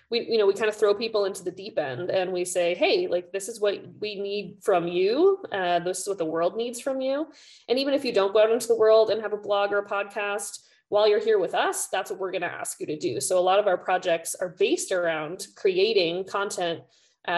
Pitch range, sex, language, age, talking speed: 185-310 Hz, female, English, 20-39, 260 wpm